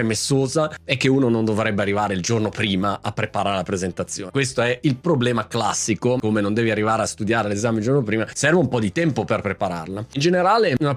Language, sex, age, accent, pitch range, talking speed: Italian, male, 30-49, native, 110-150 Hz, 210 wpm